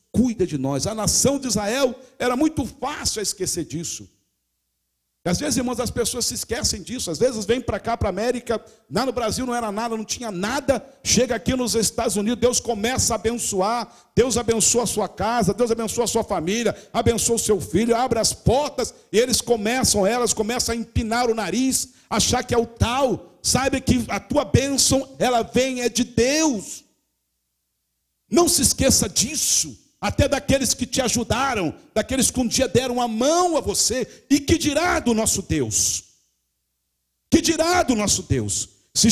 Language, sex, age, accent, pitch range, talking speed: English, male, 60-79, Brazilian, 195-270 Hz, 180 wpm